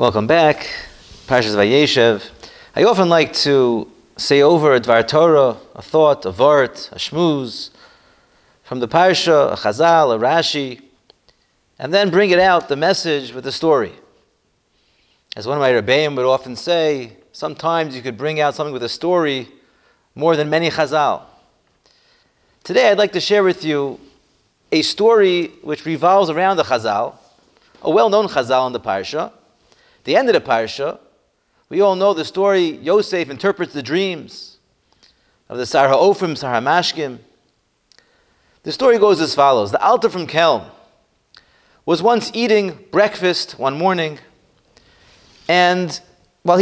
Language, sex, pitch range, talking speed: English, male, 140-200 Hz, 145 wpm